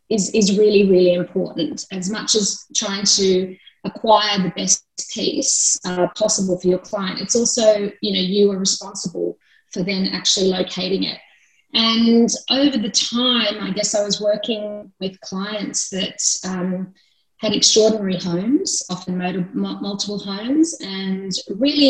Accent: Australian